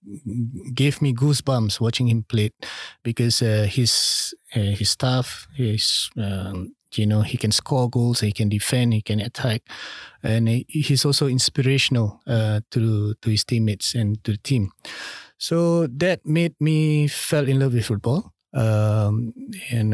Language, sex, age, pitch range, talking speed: English, male, 30-49, 110-135 Hz, 150 wpm